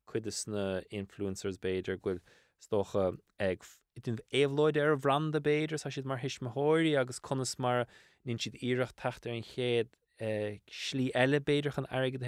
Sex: male